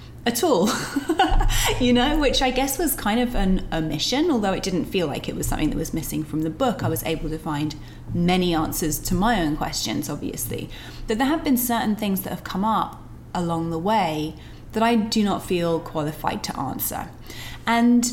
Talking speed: 200 wpm